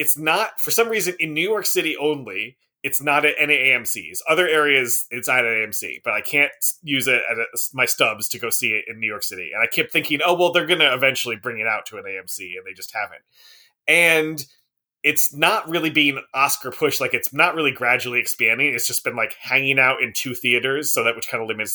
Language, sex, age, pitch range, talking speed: English, male, 30-49, 125-160 Hz, 245 wpm